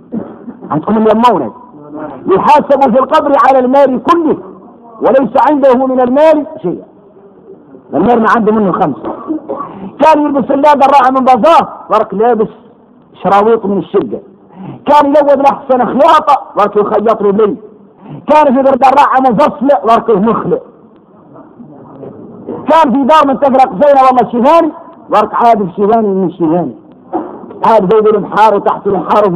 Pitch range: 215-280 Hz